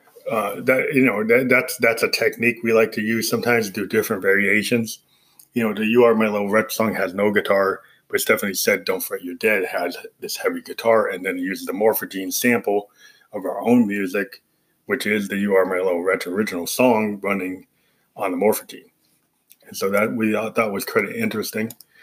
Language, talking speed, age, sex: English, 200 wpm, 30-49, male